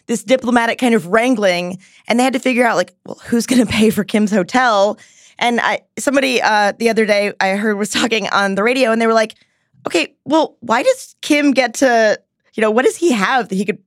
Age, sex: 20-39, female